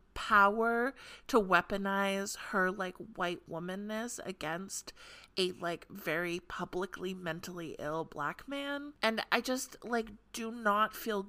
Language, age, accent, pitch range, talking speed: English, 30-49, American, 175-230 Hz, 120 wpm